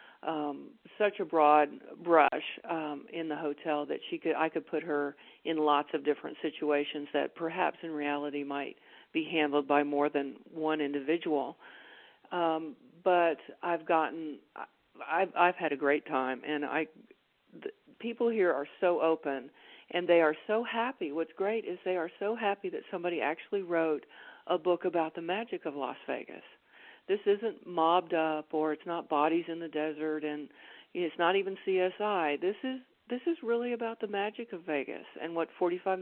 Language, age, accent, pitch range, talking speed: English, 50-69, American, 150-190 Hz, 175 wpm